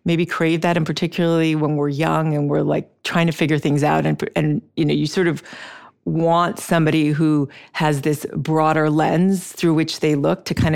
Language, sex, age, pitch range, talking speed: English, female, 40-59, 150-175 Hz, 200 wpm